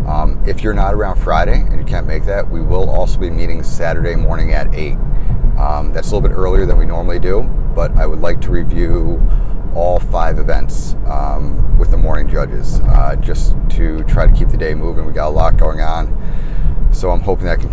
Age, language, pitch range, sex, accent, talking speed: 30-49, English, 75-95 Hz, male, American, 220 wpm